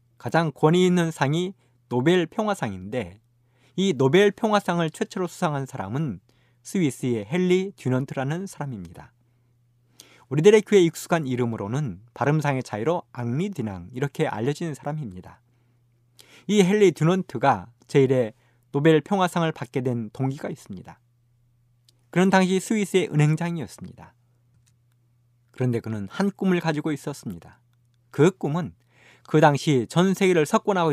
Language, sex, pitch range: Korean, male, 120-170 Hz